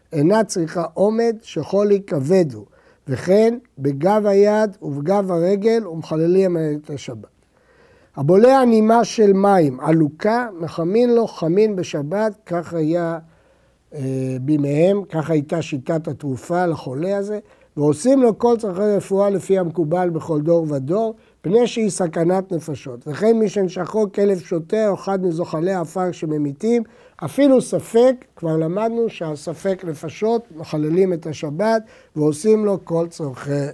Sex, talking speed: male, 125 wpm